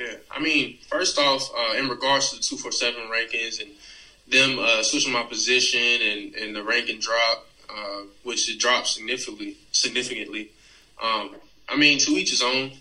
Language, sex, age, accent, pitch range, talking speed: English, male, 20-39, American, 115-135 Hz, 170 wpm